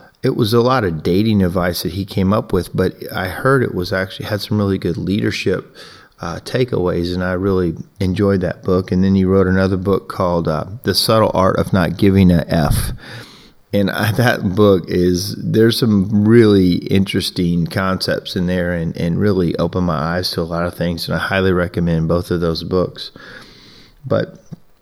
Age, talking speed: 30-49, 195 wpm